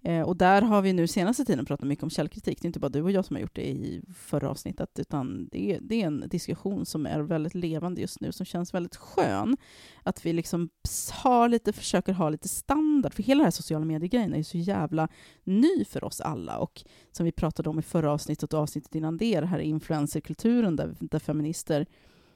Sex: female